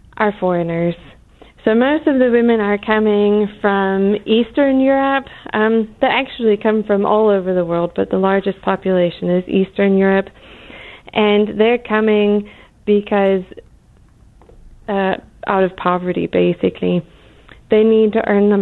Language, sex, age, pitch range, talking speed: English, female, 20-39, 195-225 Hz, 135 wpm